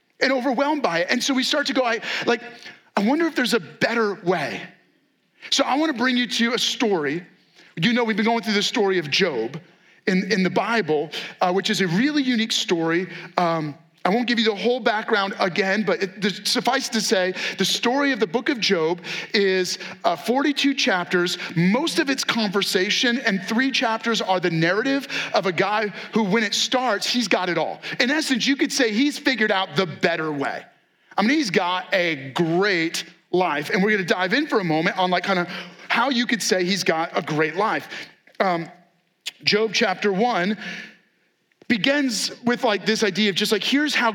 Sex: male